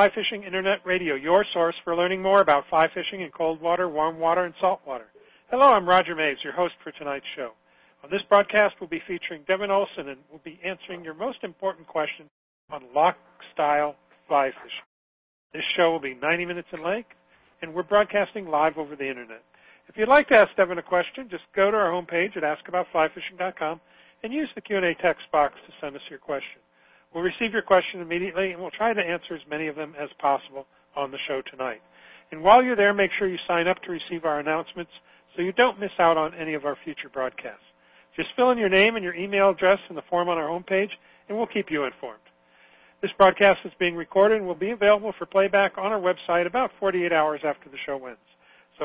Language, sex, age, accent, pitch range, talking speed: English, male, 50-69, American, 155-195 Hz, 215 wpm